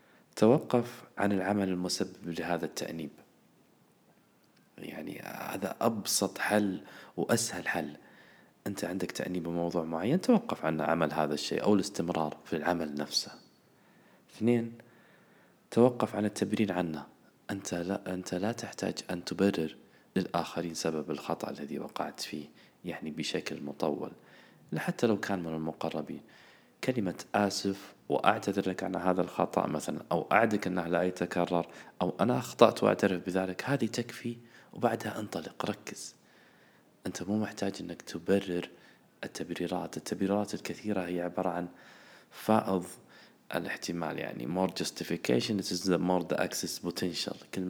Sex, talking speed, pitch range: male, 120 wpm, 85-105 Hz